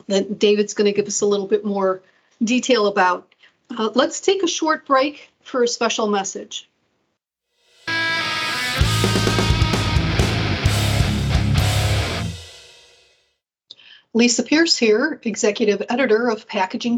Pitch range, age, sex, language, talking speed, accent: 210-275 Hz, 40-59, female, English, 105 wpm, American